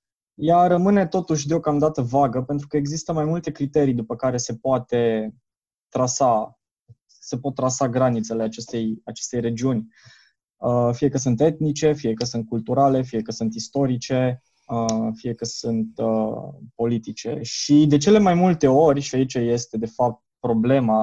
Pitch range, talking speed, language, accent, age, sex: 115-145 Hz, 150 wpm, Romanian, native, 20-39, male